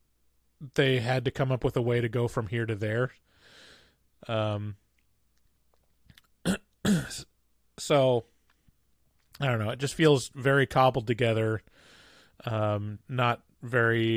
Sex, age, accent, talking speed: male, 20-39, American, 120 wpm